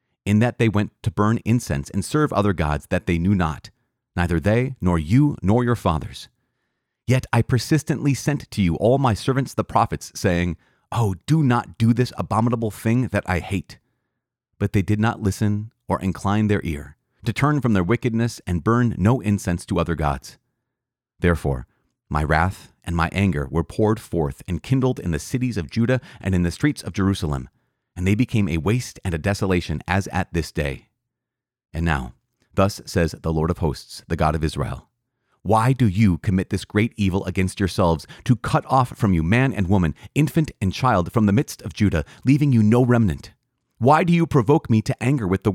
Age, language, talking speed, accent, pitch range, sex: 30-49, English, 195 wpm, American, 90-125 Hz, male